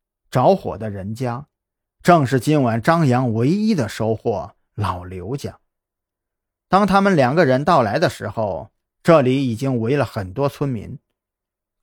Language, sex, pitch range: Chinese, male, 105-160 Hz